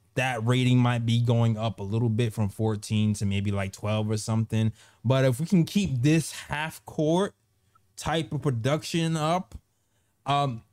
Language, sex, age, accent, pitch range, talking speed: English, male, 20-39, American, 110-150 Hz, 170 wpm